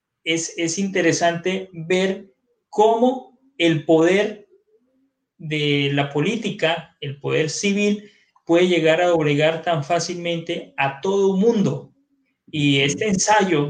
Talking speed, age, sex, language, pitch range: 110 wpm, 30-49, male, Spanish, 150-190 Hz